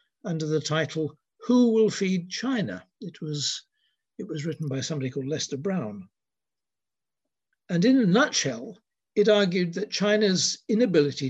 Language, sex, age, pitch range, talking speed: English, male, 60-79, 145-205 Hz, 135 wpm